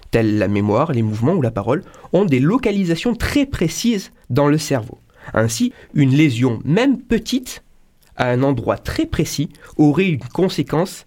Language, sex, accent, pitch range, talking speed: French, male, French, 130-180 Hz, 155 wpm